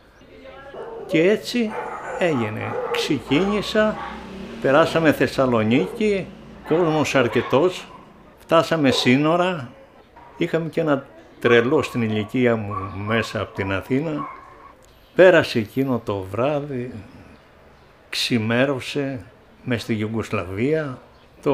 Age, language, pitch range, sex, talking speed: 60-79, Greek, 115-160 Hz, male, 85 wpm